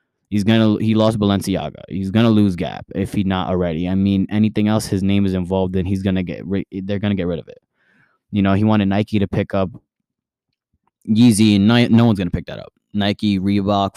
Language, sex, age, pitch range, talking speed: English, male, 20-39, 100-120 Hz, 220 wpm